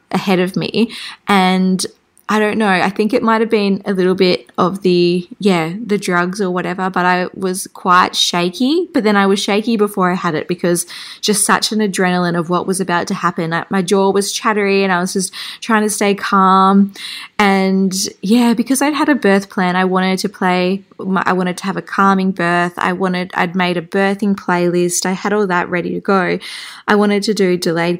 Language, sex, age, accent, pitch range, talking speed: English, female, 20-39, Australian, 180-220 Hz, 210 wpm